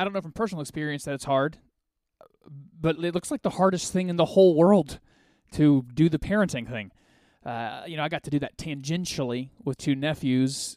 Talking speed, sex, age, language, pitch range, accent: 205 wpm, male, 20-39, English, 130-170 Hz, American